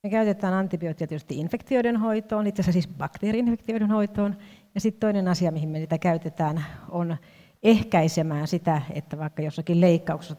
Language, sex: Finnish, female